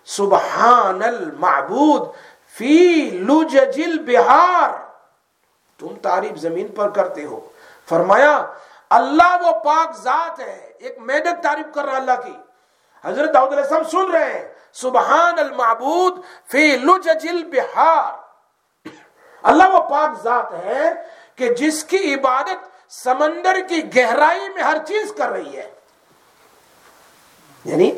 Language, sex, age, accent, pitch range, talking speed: English, male, 50-69, Indian, 240-345 Hz, 110 wpm